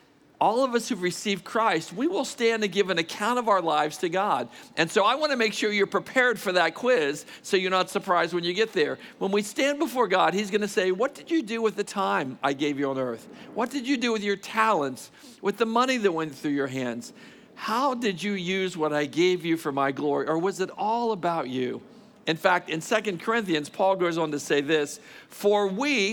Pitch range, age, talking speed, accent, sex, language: 150-215 Hz, 50-69, 240 wpm, American, male, English